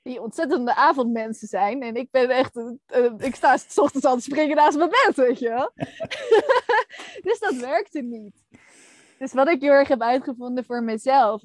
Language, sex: Dutch, female